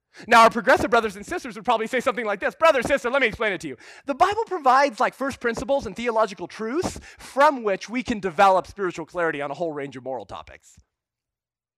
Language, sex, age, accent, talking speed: English, male, 30-49, American, 220 wpm